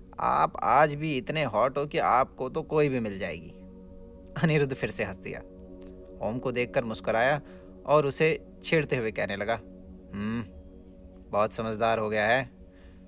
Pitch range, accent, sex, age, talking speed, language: 95-130 Hz, native, male, 30-49, 155 wpm, Hindi